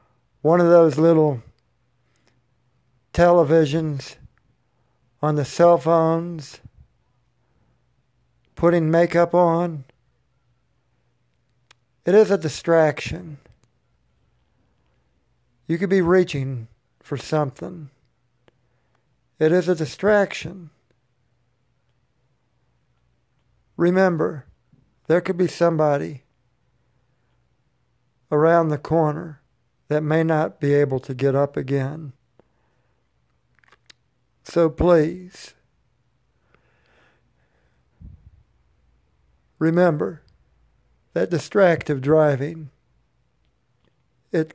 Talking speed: 65 wpm